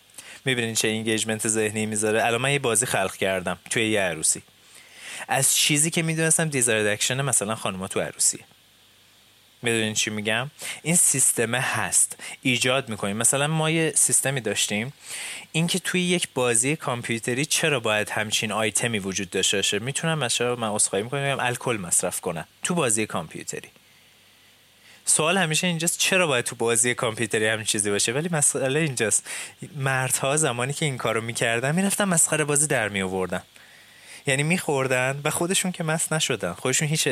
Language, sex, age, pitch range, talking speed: Persian, male, 20-39, 110-150 Hz, 150 wpm